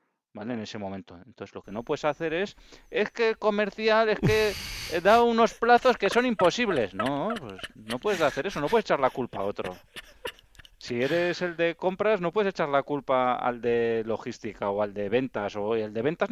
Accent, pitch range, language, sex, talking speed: Spanish, 120-195 Hz, Spanish, male, 205 wpm